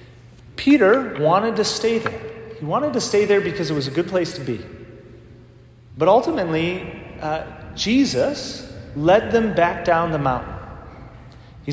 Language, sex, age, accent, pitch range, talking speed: English, male, 30-49, American, 150-205 Hz, 150 wpm